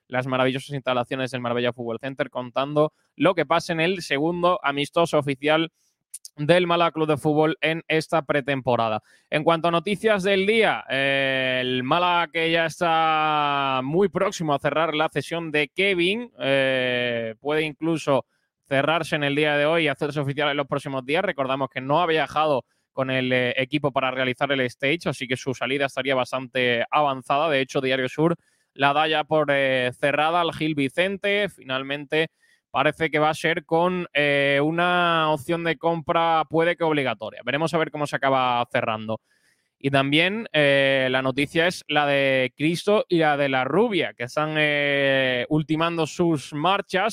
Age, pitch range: 20-39, 135-165 Hz